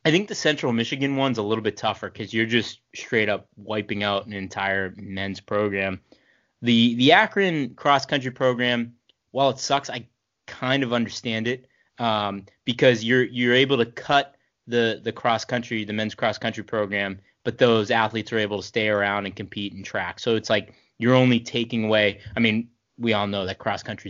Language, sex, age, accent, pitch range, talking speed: English, male, 20-39, American, 105-125 Hz, 195 wpm